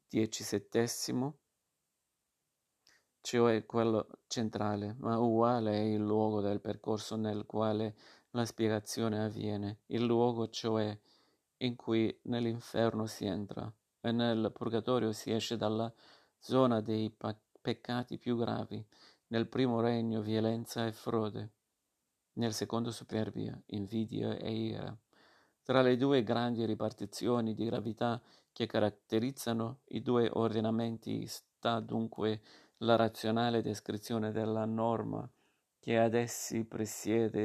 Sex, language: male, Italian